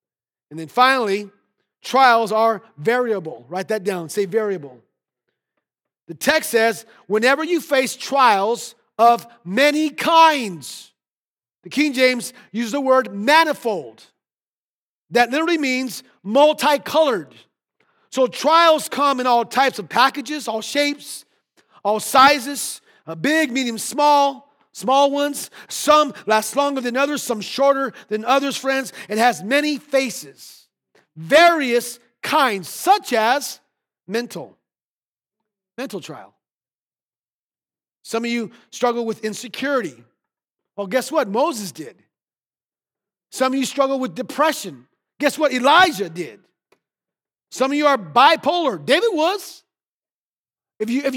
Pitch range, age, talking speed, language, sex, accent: 220-285 Hz, 40-59, 115 wpm, English, male, American